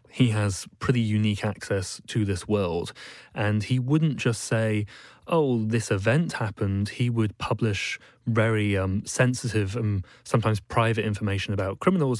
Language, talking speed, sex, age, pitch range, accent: English, 145 wpm, male, 20-39, 105-120 Hz, British